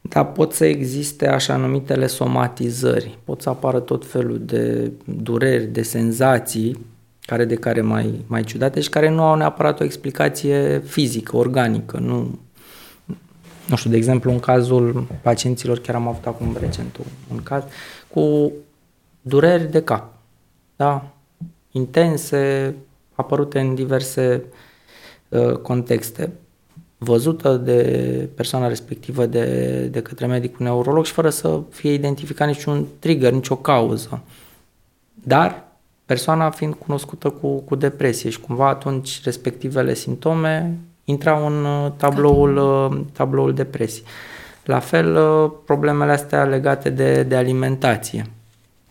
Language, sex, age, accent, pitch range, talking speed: Romanian, male, 20-39, native, 115-145 Hz, 125 wpm